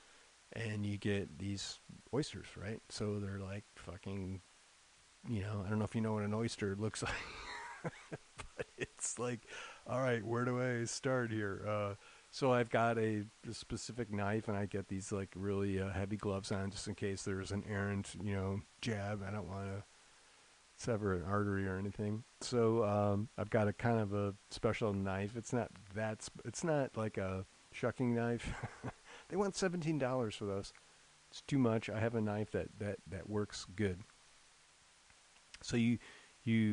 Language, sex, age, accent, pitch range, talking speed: English, male, 40-59, American, 100-115 Hz, 180 wpm